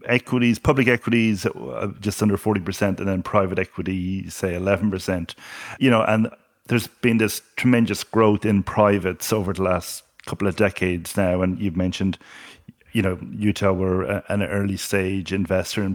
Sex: male